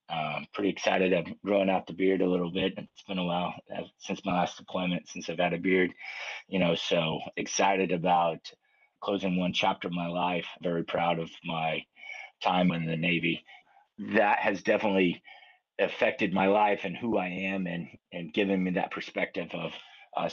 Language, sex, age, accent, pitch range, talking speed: English, male, 30-49, American, 80-95 Hz, 180 wpm